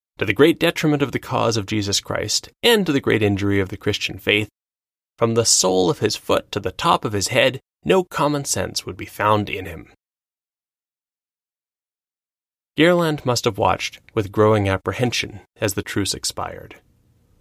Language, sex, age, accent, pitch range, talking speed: English, male, 30-49, American, 95-110 Hz, 170 wpm